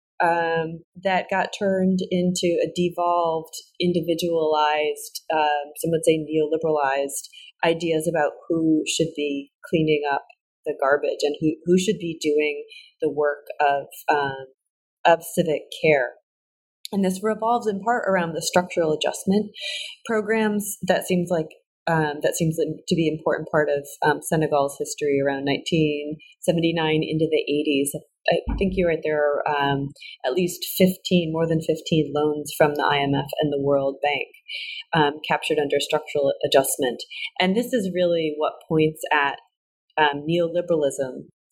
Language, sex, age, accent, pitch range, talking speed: English, female, 30-49, American, 150-190 Hz, 150 wpm